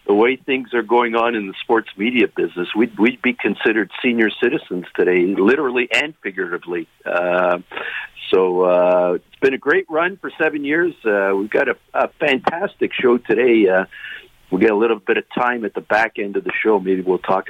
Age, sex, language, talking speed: 50-69, male, English, 200 wpm